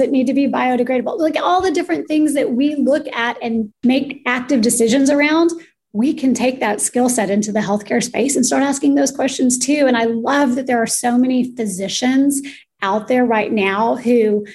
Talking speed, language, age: 200 wpm, English, 30-49